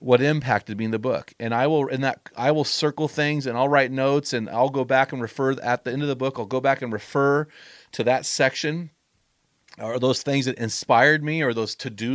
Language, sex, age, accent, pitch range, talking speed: English, male, 30-49, American, 125-145 Hz, 235 wpm